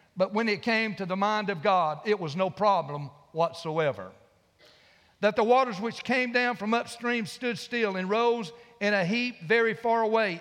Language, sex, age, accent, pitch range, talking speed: English, male, 50-69, American, 190-235 Hz, 185 wpm